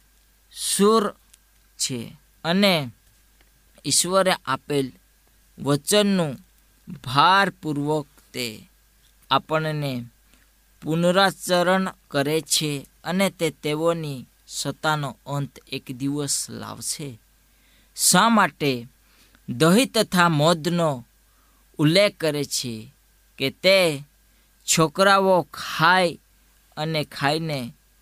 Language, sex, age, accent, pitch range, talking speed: Gujarati, female, 20-39, native, 130-170 Hz, 45 wpm